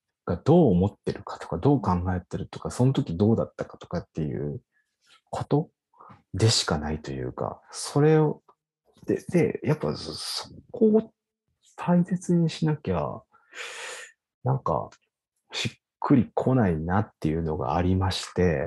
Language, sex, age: Japanese, male, 40-59